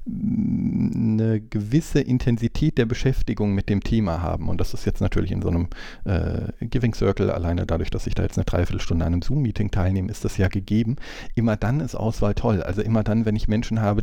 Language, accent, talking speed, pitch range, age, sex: German, German, 205 wpm, 95-110 Hz, 40-59, male